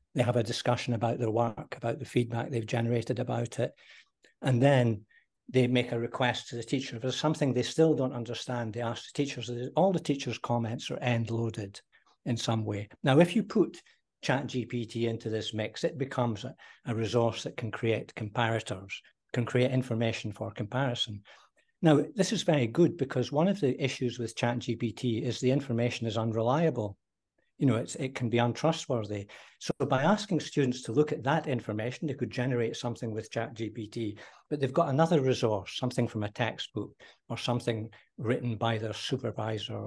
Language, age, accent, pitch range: English, 60-79, British, 115-135 Hz